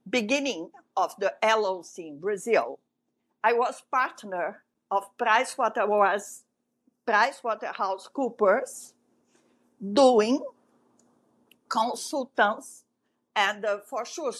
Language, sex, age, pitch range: English, female, 50-69, 225-290 Hz